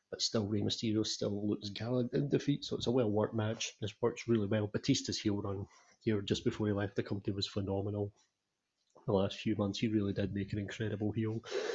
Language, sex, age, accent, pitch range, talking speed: English, male, 30-49, British, 105-125 Hz, 215 wpm